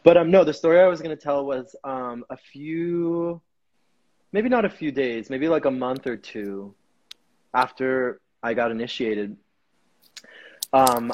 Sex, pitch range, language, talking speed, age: male, 120-150 Hz, English, 155 wpm, 20-39